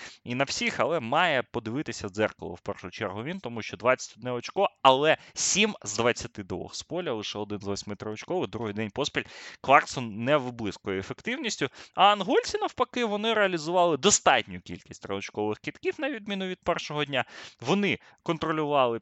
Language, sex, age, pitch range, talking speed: Ukrainian, male, 20-39, 105-155 Hz, 155 wpm